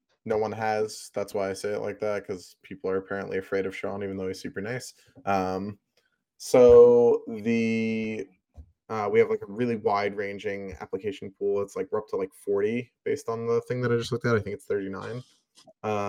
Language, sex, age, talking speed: English, male, 20-39, 205 wpm